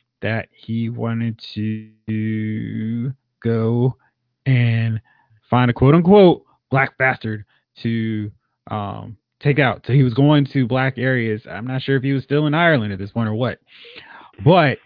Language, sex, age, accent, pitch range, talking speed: English, male, 20-39, American, 110-135 Hz, 150 wpm